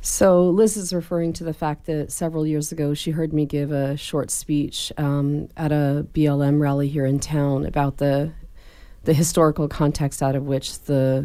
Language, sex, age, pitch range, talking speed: English, female, 30-49, 140-155 Hz, 185 wpm